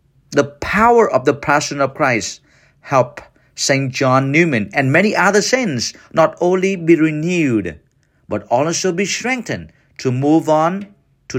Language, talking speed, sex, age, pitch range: English, 140 wpm, male, 50-69, 120-145 Hz